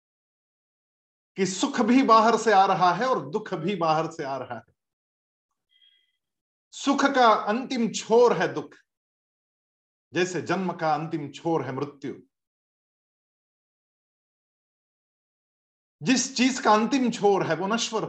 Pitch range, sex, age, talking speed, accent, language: 160-245 Hz, male, 50-69, 125 wpm, native, Hindi